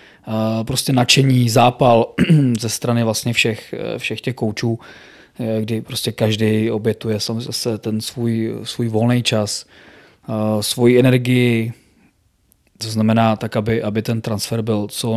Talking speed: 125 wpm